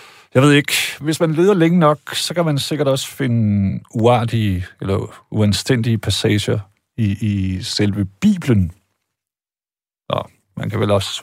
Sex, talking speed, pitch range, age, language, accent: male, 145 wpm, 100-130 Hz, 50-69, Danish, native